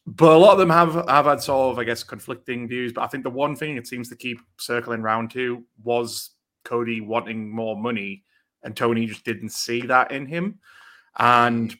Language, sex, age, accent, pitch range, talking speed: English, male, 30-49, British, 110-140 Hz, 210 wpm